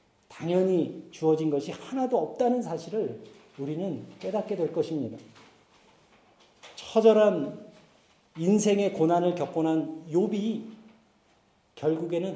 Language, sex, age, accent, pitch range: Korean, male, 40-59, native, 185-250 Hz